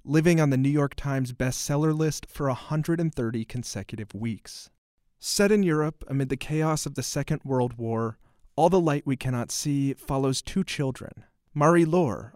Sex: male